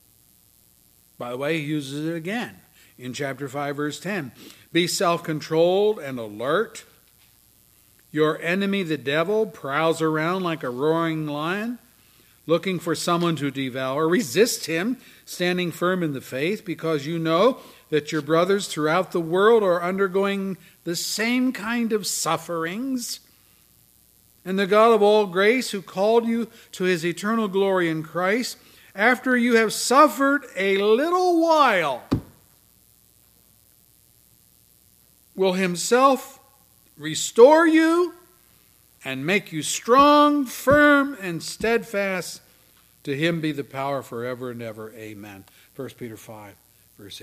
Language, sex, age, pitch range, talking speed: English, male, 50-69, 135-210 Hz, 125 wpm